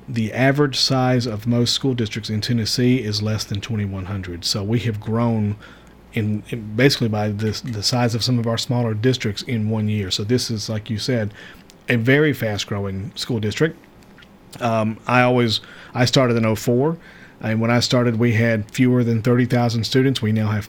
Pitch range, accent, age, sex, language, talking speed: 110-130 Hz, American, 40-59, male, English, 190 wpm